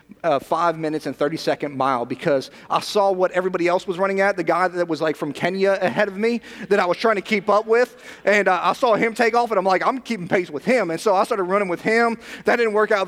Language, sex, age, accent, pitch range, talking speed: English, male, 30-49, American, 175-230 Hz, 275 wpm